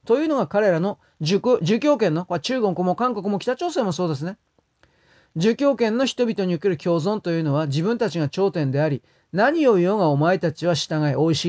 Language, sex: Japanese, male